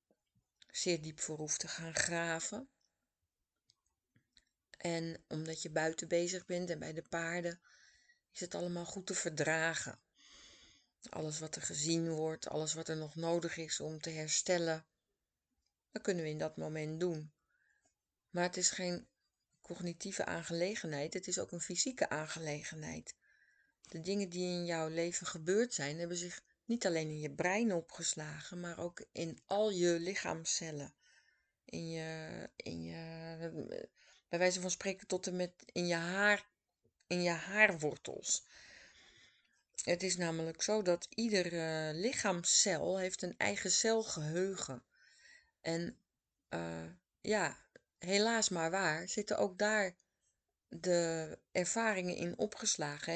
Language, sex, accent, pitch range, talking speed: Dutch, female, Dutch, 160-190 Hz, 135 wpm